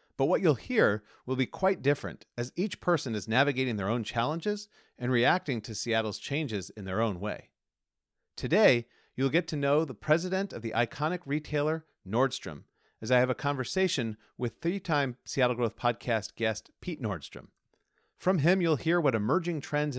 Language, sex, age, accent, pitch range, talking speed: English, male, 40-59, American, 110-155 Hz, 170 wpm